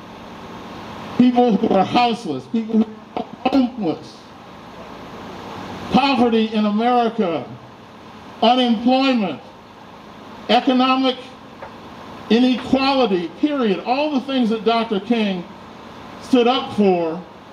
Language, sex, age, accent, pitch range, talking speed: English, male, 50-69, American, 205-245 Hz, 80 wpm